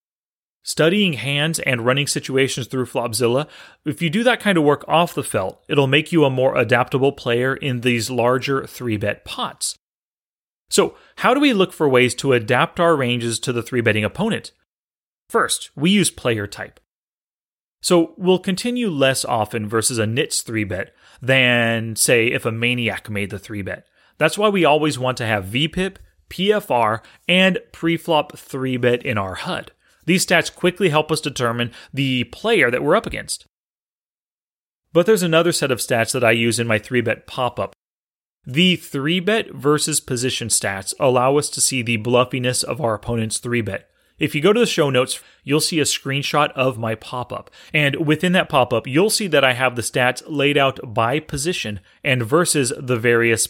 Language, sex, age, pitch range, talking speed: English, male, 30-49, 115-155 Hz, 175 wpm